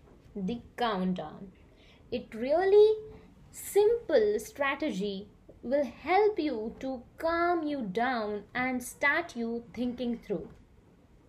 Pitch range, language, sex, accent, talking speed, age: 235-330 Hz, English, female, Indian, 95 wpm, 20-39